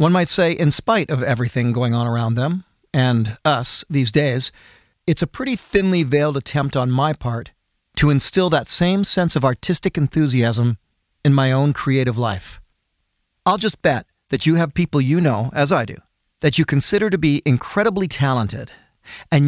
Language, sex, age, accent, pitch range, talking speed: English, male, 40-59, American, 125-165 Hz, 175 wpm